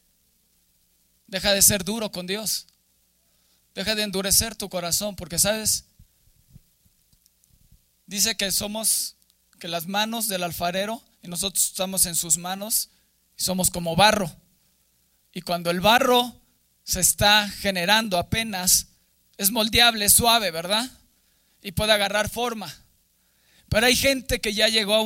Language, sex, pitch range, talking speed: Spanish, male, 170-220 Hz, 130 wpm